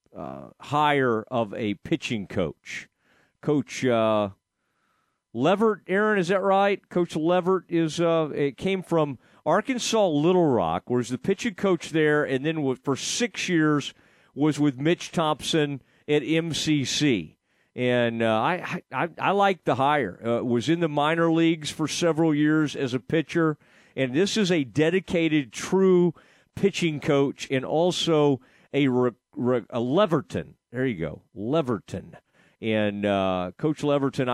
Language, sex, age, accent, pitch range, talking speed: English, male, 40-59, American, 120-165 Hz, 140 wpm